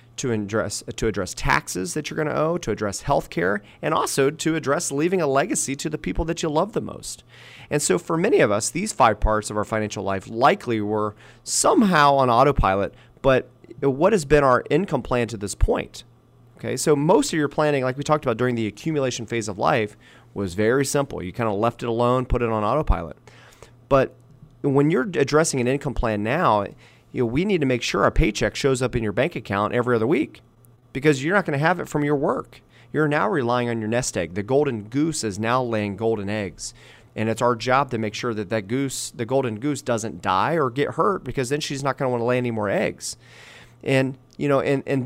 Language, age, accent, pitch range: English, 30-49, American, 110-140 Hz